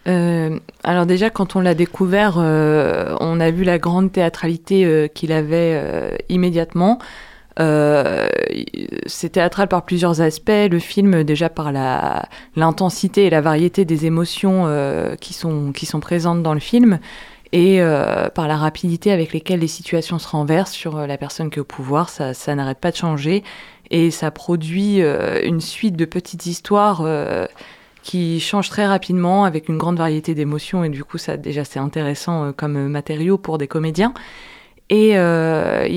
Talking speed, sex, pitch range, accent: 165 wpm, female, 155-190 Hz, French